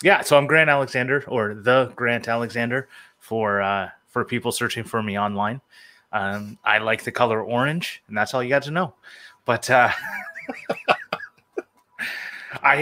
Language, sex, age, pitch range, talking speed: English, male, 30-49, 95-125 Hz, 150 wpm